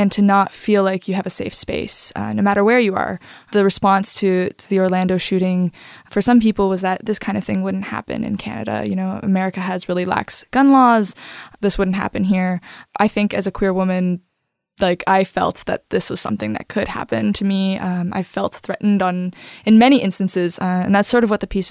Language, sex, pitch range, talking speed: English, female, 185-205 Hz, 225 wpm